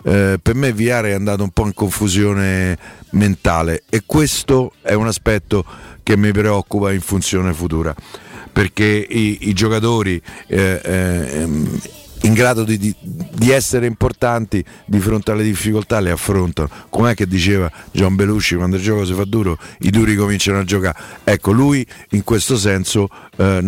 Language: Italian